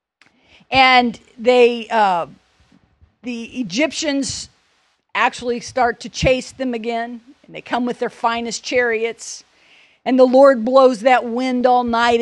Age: 50-69